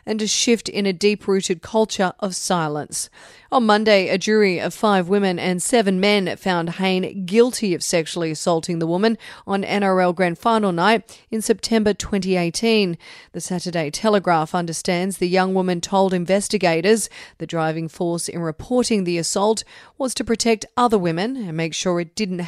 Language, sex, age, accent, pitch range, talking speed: English, female, 40-59, Australian, 180-215 Hz, 165 wpm